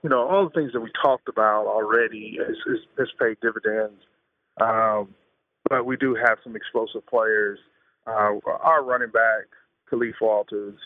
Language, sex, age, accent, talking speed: English, male, 30-49, American, 145 wpm